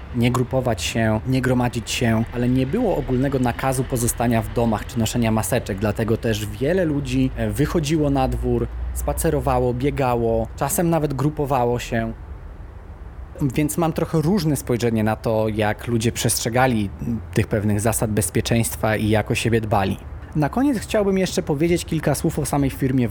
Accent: native